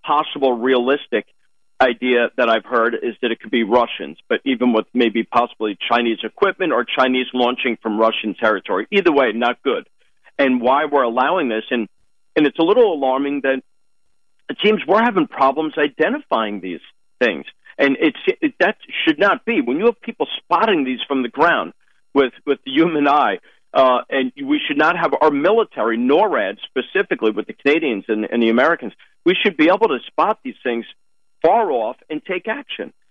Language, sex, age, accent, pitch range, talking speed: English, male, 50-69, American, 120-175 Hz, 180 wpm